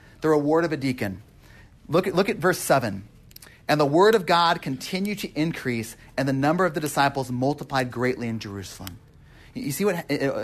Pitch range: 130-210 Hz